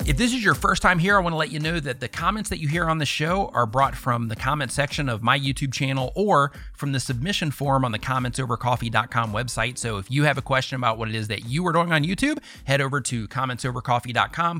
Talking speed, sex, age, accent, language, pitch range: 245 wpm, male, 30-49, American, English, 115-140 Hz